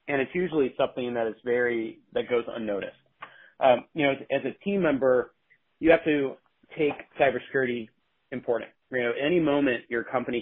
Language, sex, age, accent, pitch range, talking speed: English, male, 30-49, American, 115-140 Hz, 175 wpm